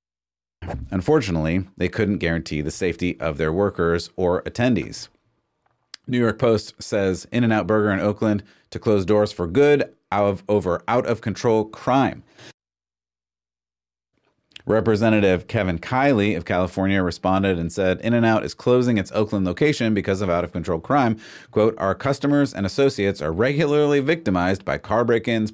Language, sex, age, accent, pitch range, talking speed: English, male, 30-49, American, 90-115 Hz, 135 wpm